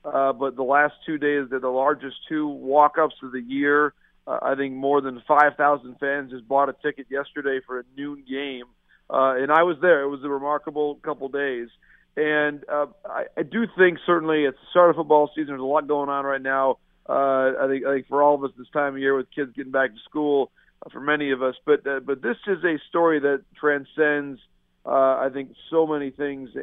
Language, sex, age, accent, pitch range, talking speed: English, male, 40-59, American, 135-150 Hz, 225 wpm